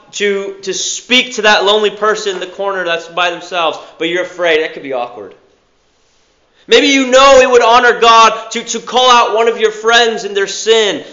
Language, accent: English, American